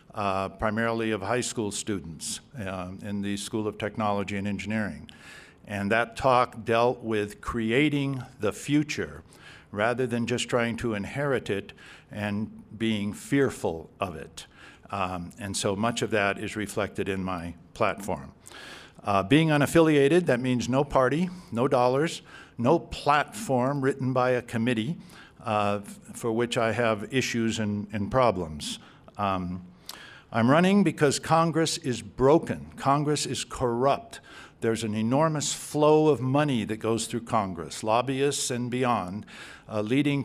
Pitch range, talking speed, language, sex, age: 105-140 Hz, 140 wpm, English, male, 60-79